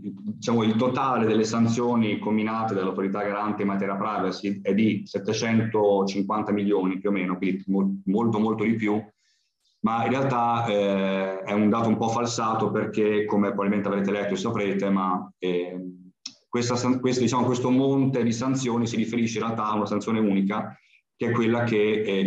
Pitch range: 95-110 Hz